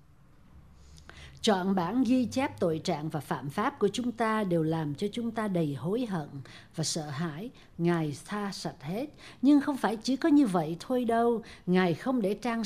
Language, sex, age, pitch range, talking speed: Vietnamese, female, 60-79, 170-240 Hz, 190 wpm